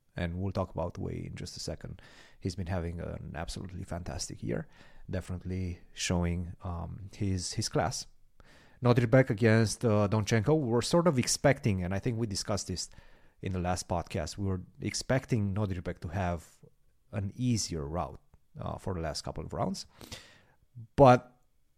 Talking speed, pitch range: 165 wpm, 95-120 Hz